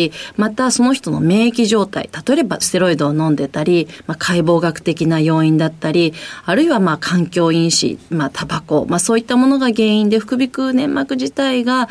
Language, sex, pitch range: Japanese, female, 160-230 Hz